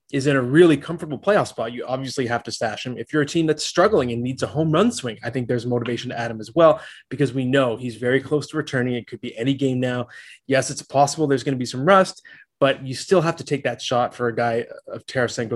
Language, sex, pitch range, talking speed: English, male, 120-150 Hz, 270 wpm